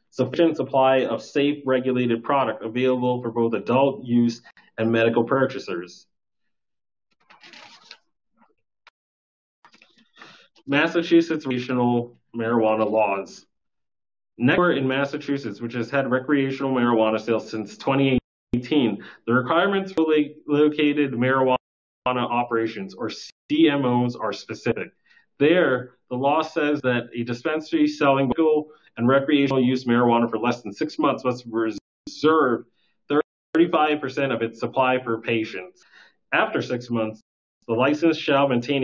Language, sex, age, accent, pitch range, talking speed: English, male, 30-49, American, 115-145 Hz, 110 wpm